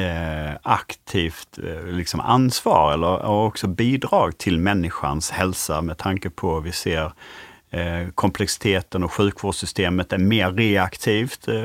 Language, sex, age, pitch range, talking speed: Swedish, male, 30-49, 90-105 Hz, 110 wpm